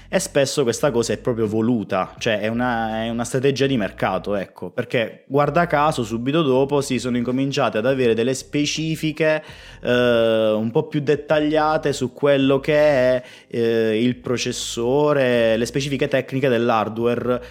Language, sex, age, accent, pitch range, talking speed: Italian, male, 20-39, native, 105-130 Hz, 155 wpm